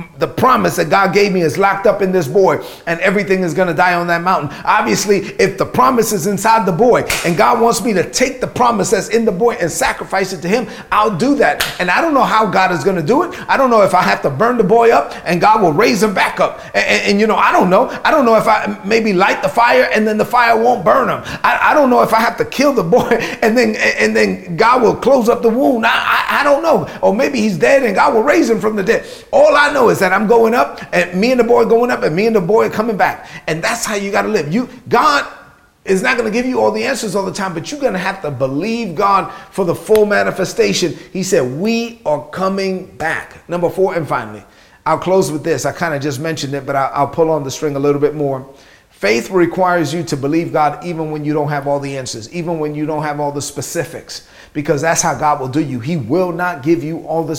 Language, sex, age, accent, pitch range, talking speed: English, male, 30-49, American, 160-225 Hz, 270 wpm